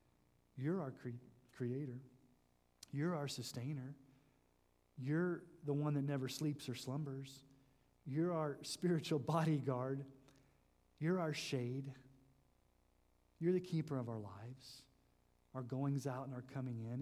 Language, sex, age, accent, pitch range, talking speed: English, male, 40-59, American, 125-175 Hz, 120 wpm